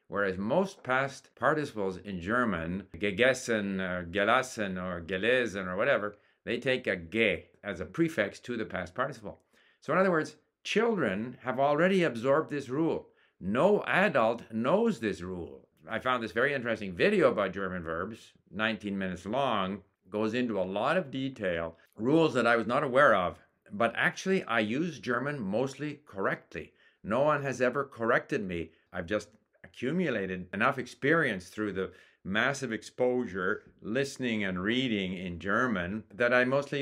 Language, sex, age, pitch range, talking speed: English, male, 50-69, 95-135 Hz, 150 wpm